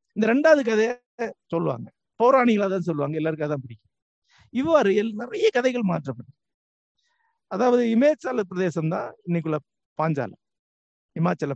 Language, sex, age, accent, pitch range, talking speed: Tamil, male, 50-69, native, 160-245 Hz, 115 wpm